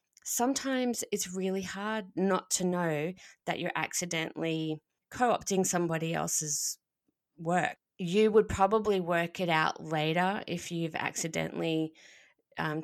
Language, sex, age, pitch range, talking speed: English, female, 20-39, 155-185 Hz, 115 wpm